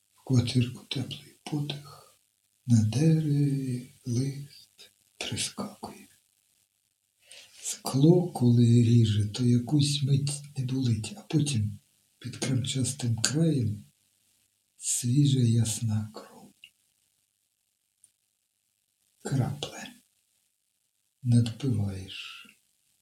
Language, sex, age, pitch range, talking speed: Ukrainian, male, 60-79, 100-125 Hz, 65 wpm